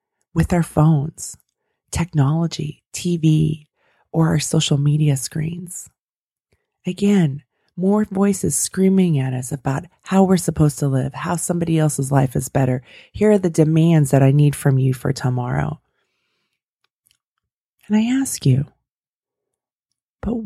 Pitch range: 135-175 Hz